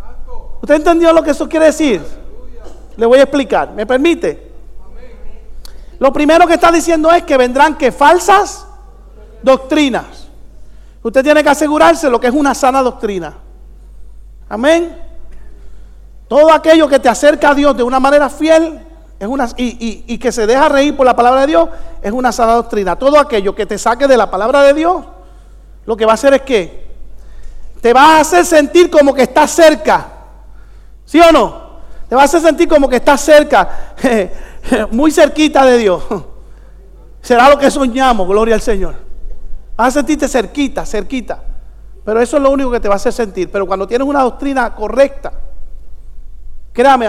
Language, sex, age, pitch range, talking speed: English, male, 50-69, 230-300 Hz, 170 wpm